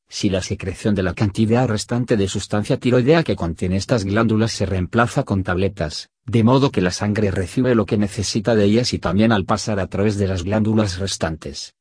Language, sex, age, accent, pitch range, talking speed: Spanish, male, 50-69, Spanish, 95-110 Hz, 200 wpm